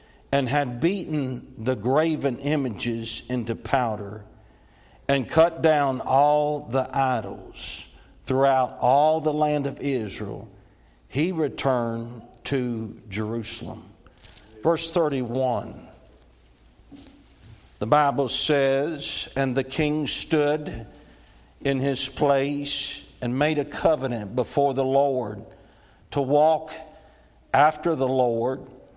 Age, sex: 60-79, male